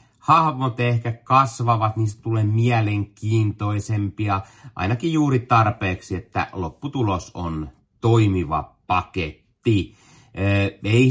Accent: native